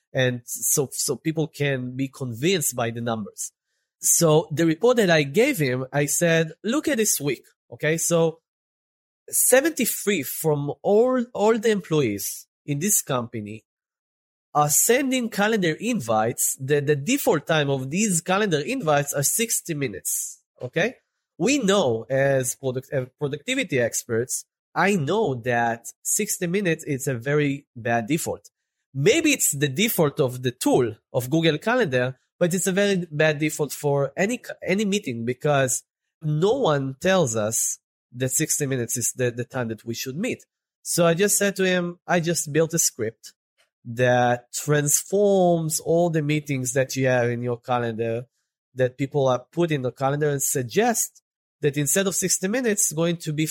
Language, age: English, 30-49